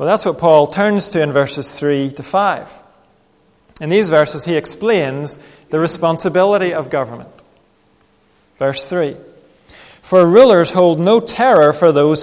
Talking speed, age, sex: 140 wpm, 40-59, male